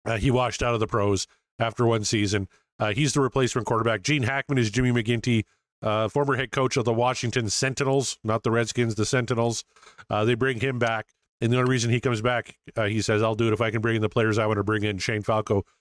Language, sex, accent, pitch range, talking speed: English, male, American, 110-135 Hz, 245 wpm